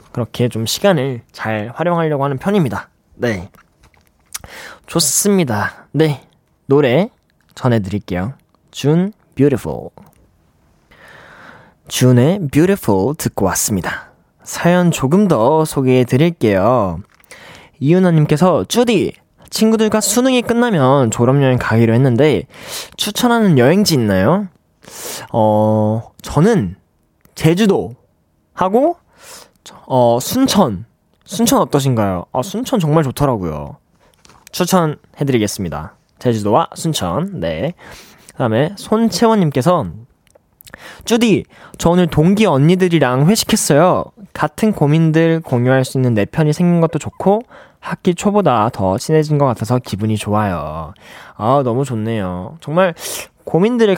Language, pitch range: Korean, 120-185 Hz